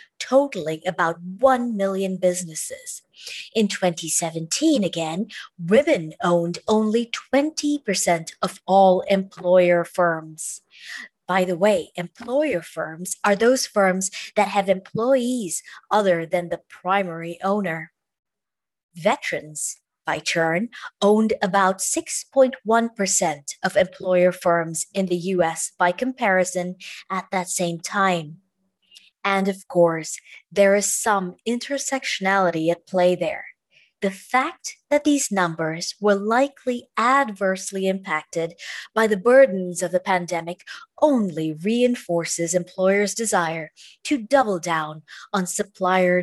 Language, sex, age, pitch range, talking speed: English, female, 30-49, 170-220 Hz, 110 wpm